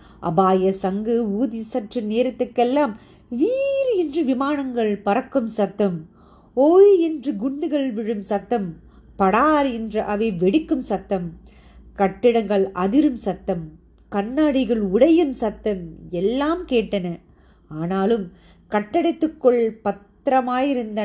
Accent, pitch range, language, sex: native, 195-275 Hz, Tamil, female